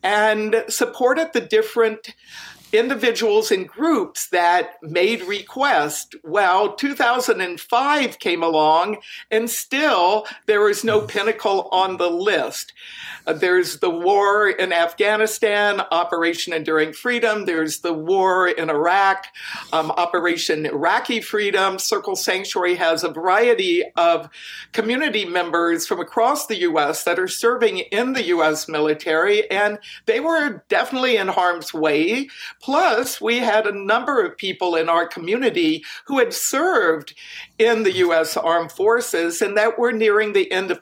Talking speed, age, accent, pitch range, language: 135 wpm, 60-79, American, 175-250 Hz, English